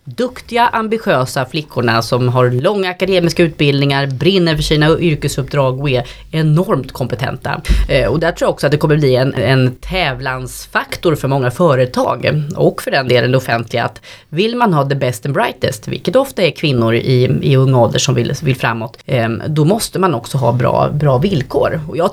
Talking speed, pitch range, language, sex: 180 wpm, 135-180 Hz, Swedish, female